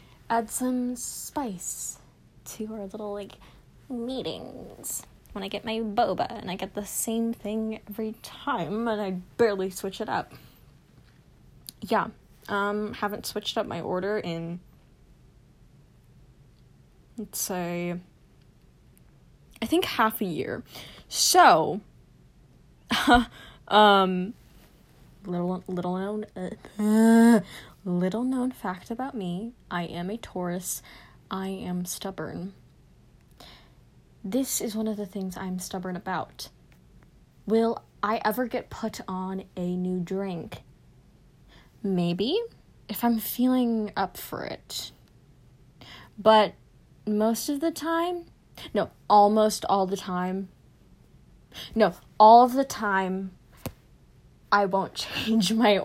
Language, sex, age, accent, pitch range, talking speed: English, female, 10-29, American, 185-225 Hz, 115 wpm